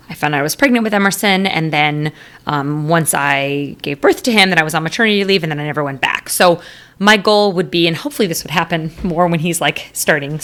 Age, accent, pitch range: 30-49, American, 160-185 Hz